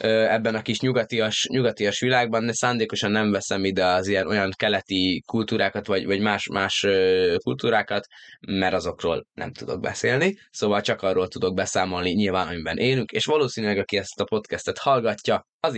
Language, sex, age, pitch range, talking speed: Hungarian, male, 20-39, 100-125 Hz, 160 wpm